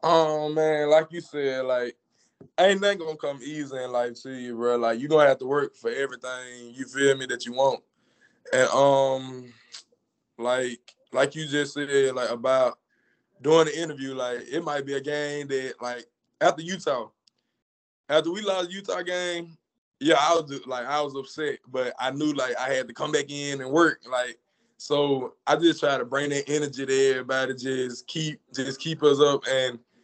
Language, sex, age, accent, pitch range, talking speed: English, male, 20-39, American, 130-160 Hz, 195 wpm